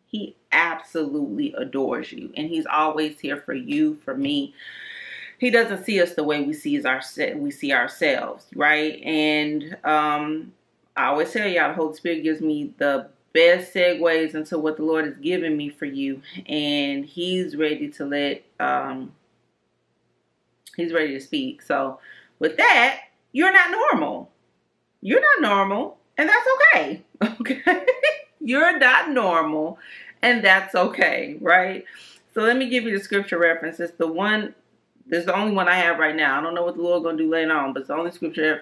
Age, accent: 30-49, American